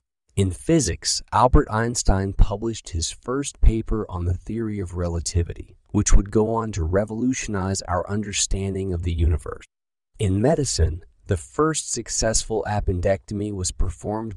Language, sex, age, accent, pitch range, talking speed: English, male, 30-49, American, 85-110 Hz, 135 wpm